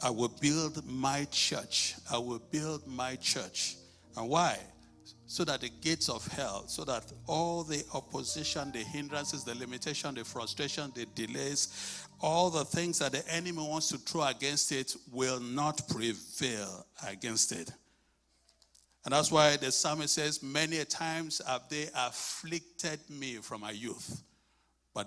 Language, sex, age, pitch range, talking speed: English, male, 60-79, 115-160 Hz, 150 wpm